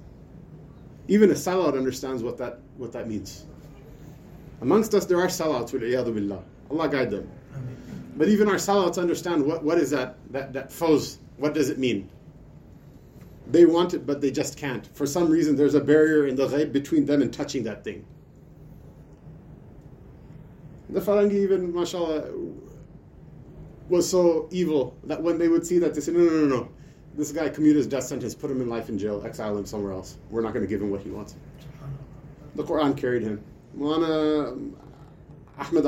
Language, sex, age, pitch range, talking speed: English, male, 30-49, 120-155 Hz, 175 wpm